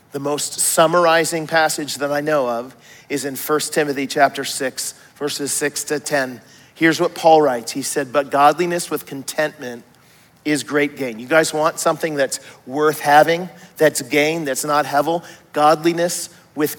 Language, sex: English, male